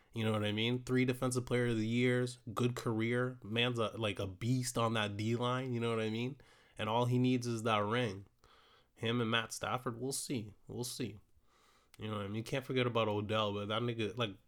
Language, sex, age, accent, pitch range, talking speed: English, male, 20-39, American, 115-135 Hz, 230 wpm